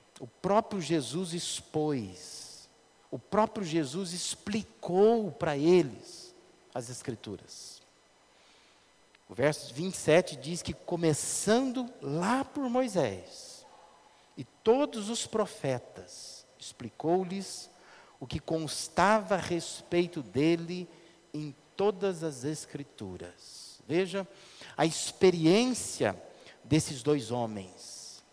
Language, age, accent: Portuguese, 50-69, Brazilian